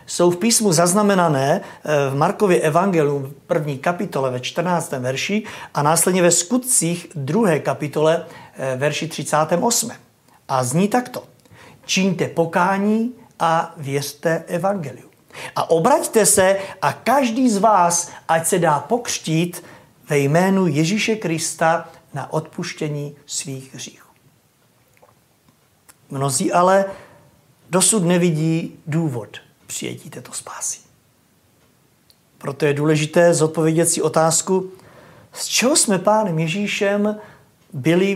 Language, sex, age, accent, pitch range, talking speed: Czech, male, 50-69, native, 150-190 Hz, 105 wpm